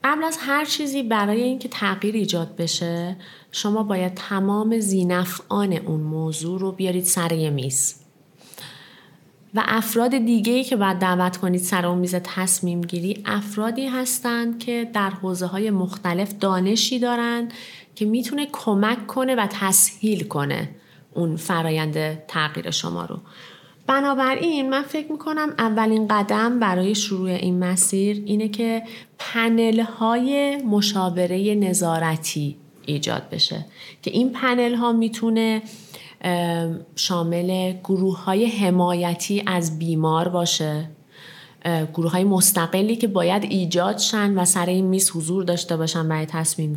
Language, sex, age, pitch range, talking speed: Persian, female, 30-49, 175-225 Hz, 120 wpm